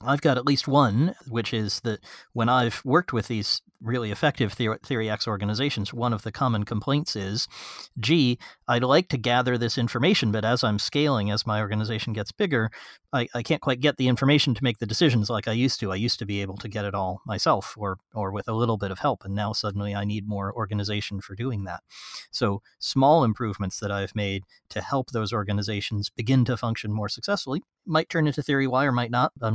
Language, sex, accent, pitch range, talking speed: English, male, American, 105-130 Hz, 220 wpm